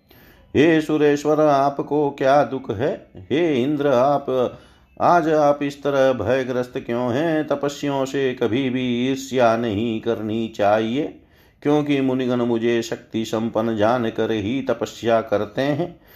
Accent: native